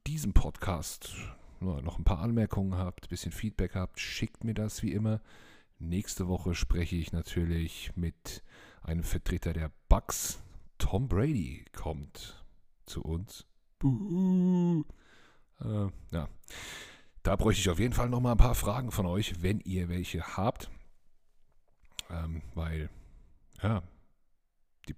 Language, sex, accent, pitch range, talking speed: German, male, German, 80-100 Hz, 130 wpm